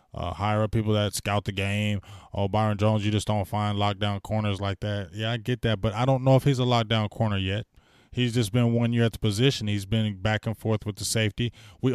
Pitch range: 105-150 Hz